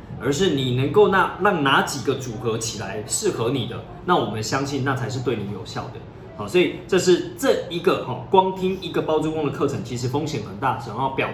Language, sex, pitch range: Chinese, male, 115-160 Hz